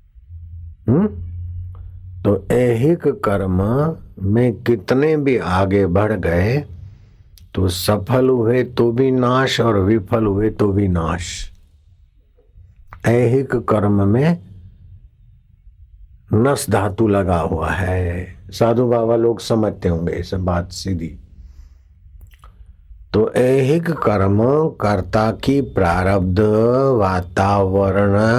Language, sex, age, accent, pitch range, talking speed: Hindi, male, 60-79, native, 90-115 Hz, 95 wpm